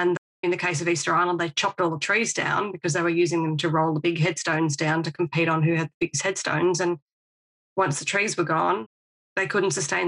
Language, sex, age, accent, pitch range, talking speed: English, female, 20-39, Australian, 160-180 Hz, 240 wpm